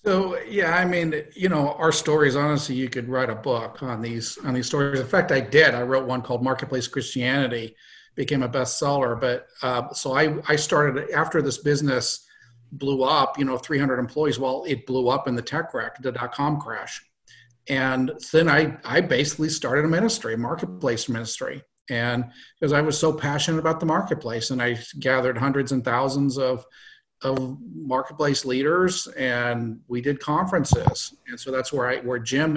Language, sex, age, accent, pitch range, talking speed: English, male, 50-69, American, 125-155 Hz, 185 wpm